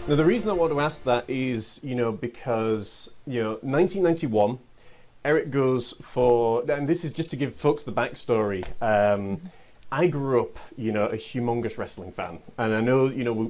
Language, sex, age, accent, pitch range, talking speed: English, male, 30-49, British, 110-140 Hz, 190 wpm